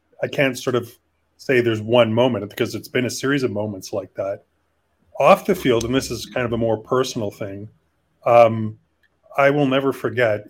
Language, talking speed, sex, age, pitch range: English, 195 wpm, male, 30-49, 105-125 Hz